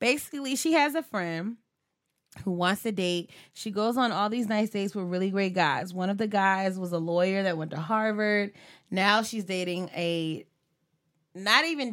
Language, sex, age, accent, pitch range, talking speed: English, female, 20-39, American, 175-215 Hz, 185 wpm